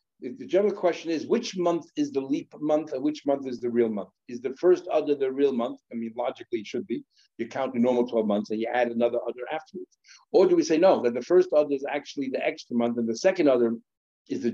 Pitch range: 125-185 Hz